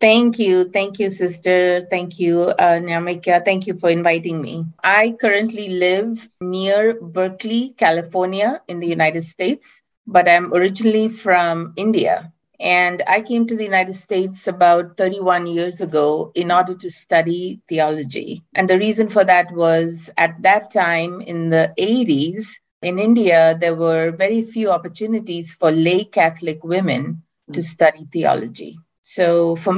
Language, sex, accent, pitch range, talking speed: English, female, Indian, 165-195 Hz, 145 wpm